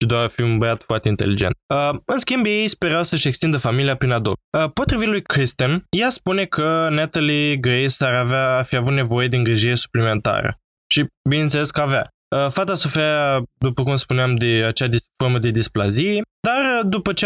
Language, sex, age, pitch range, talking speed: Romanian, male, 20-39, 120-160 Hz, 180 wpm